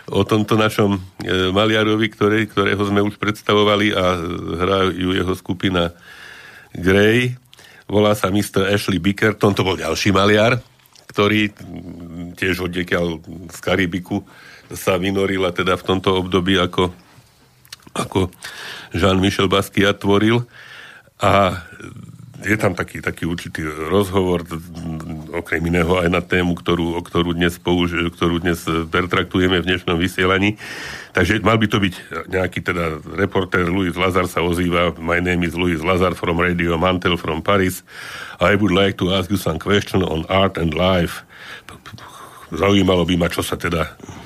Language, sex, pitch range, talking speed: Slovak, male, 85-100 Hz, 140 wpm